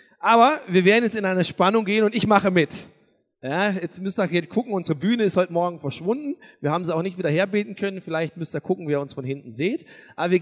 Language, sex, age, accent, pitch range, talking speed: German, male, 40-59, German, 190-255 Hz, 250 wpm